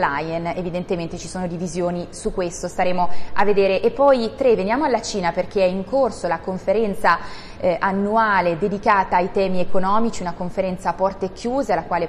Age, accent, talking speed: 20-39, native, 175 wpm